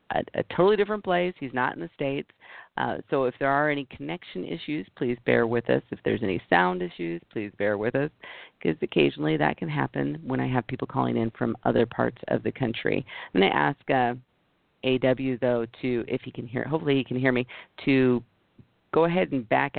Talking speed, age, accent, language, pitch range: 210 wpm, 40-59, American, English, 115-140 Hz